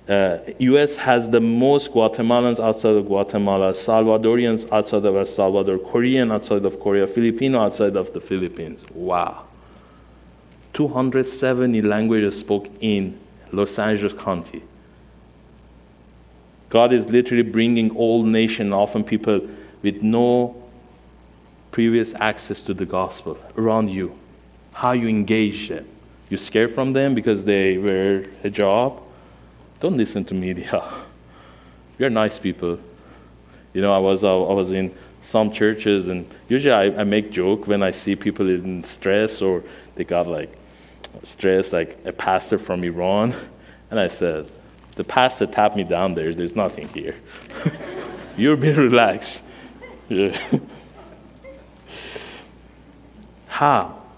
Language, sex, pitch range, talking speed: English, male, 90-115 Hz, 125 wpm